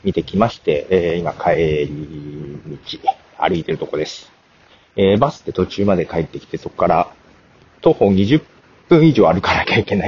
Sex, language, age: male, Japanese, 40-59